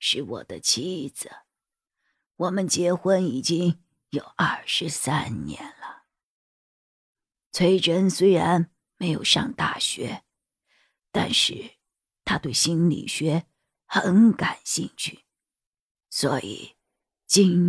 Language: Chinese